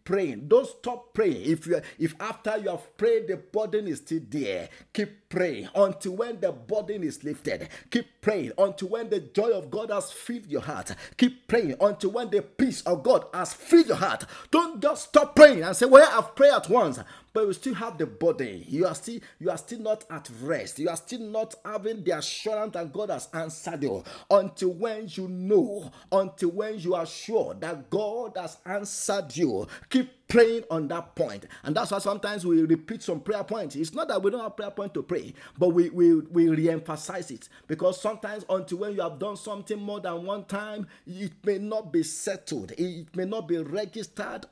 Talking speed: 205 wpm